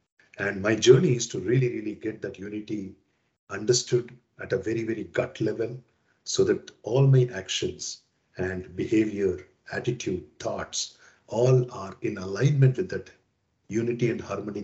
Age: 50-69